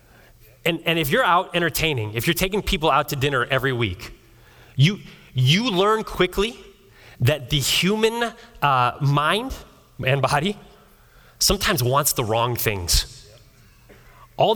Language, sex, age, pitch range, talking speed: English, male, 30-49, 110-150 Hz, 130 wpm